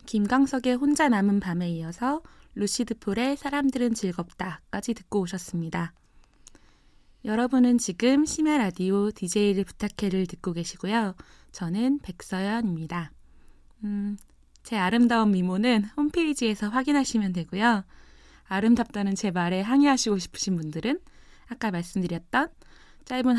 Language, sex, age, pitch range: Korean, female, 20-39, 180-240 Hz